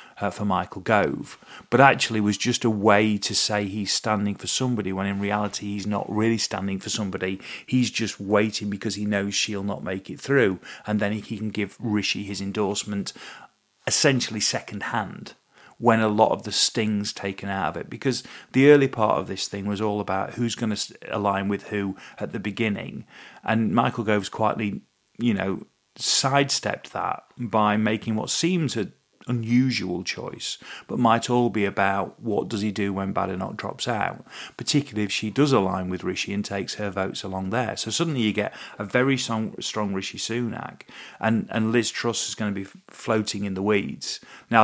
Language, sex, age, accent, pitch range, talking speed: English, male, 40-59, British, 100-115 Hz, 185 wpm